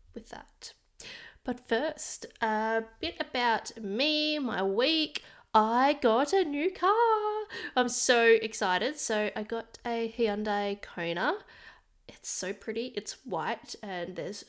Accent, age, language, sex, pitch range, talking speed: Australian, 20-39, English, female, 190-235 Hz, 125 wpm